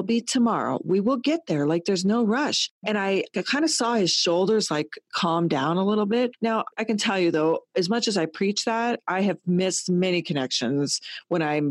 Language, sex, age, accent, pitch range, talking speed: English, female, 40-59, American, 155-220 Hz, 215 wpm